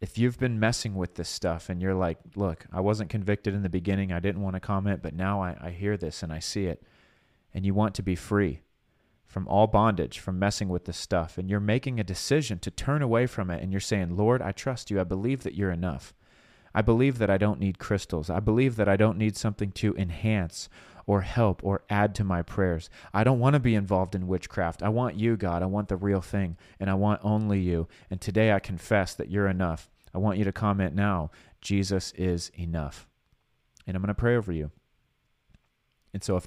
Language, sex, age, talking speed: English, male, 30-49, 230 wpm